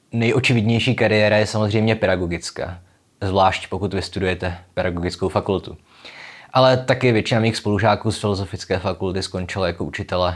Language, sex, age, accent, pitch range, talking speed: Czech, male, 20-39, native, 90-105 Hz, 125 wpm